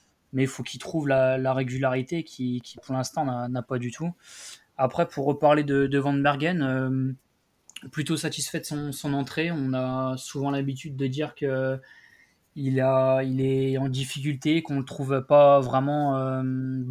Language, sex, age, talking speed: French, male, 20-39, 180 wpm